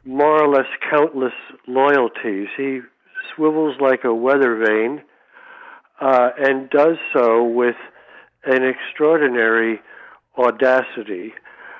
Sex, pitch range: male, 120-140 Hz